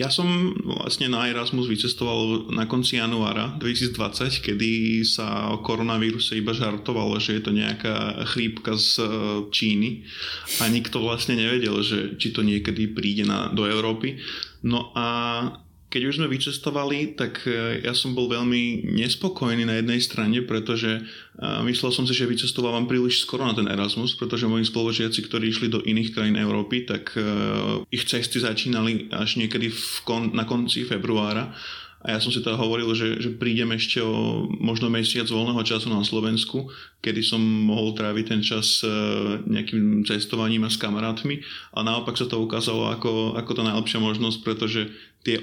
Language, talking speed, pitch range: Slovak, 160 wpm, 110-120 Hz